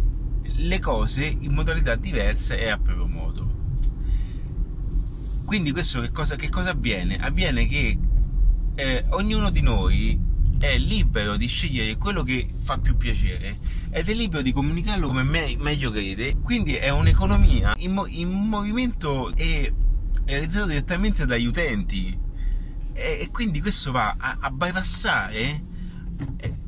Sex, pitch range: male, 105-140 Hz